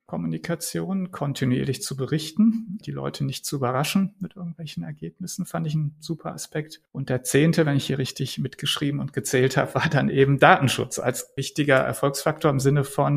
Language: German